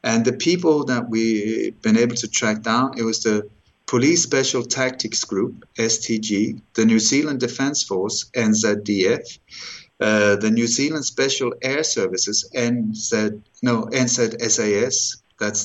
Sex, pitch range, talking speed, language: male, 105-135 Hz, 125 wpm, English